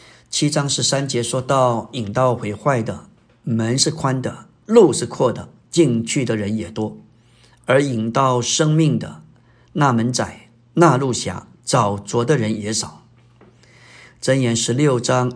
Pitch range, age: 115-135 Hz, 50-69